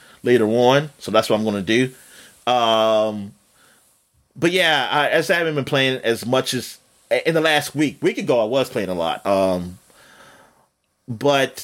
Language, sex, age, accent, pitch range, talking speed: English, male, 30-49, American, 105-140 Hz, 170 wpm